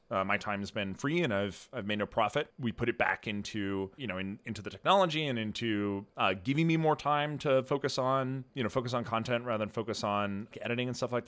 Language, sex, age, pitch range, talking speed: English, male, 30-49, 105-130 Hz, 245 wpm